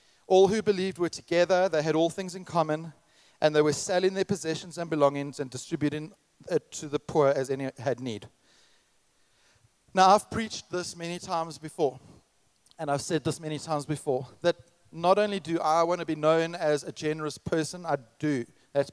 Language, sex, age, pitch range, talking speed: English, male, 40-59, 145-180 Hz, 185 wpm